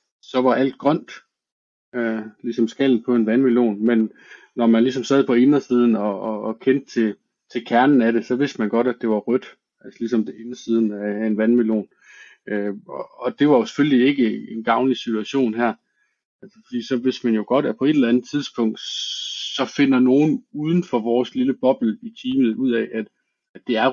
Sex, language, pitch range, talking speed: male, Danish, 115-140 Hz, 205 wpm